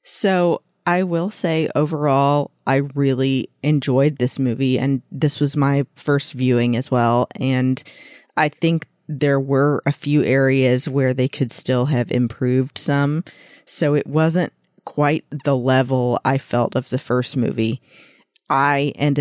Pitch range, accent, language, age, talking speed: 130-150 Hz, American, English, 40-59, 145 wpm